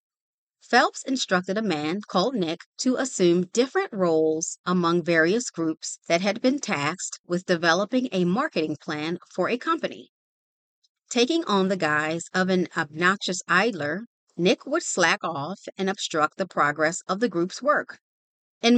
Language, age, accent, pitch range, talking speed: English, 40-59, American, 165-235 Hz, 145 wpm